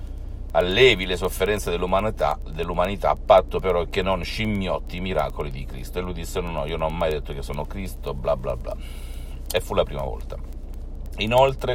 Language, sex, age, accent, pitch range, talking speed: Italian, male, 50-69, native, 65-90 Hz, 190 wpm